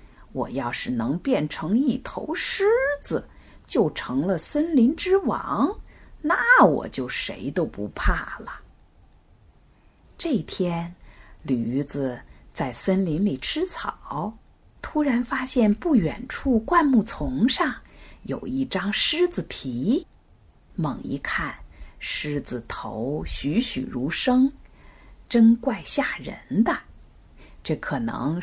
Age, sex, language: 50-69, female, Chinese